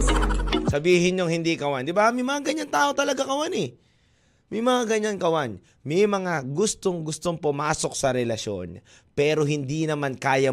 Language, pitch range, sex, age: Filipino, 120-190 Hz, male, 20-39